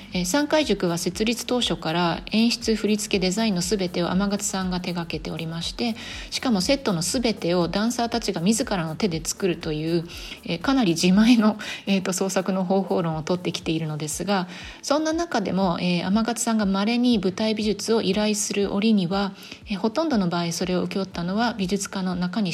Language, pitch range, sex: Japanese, 175-210 Hz, female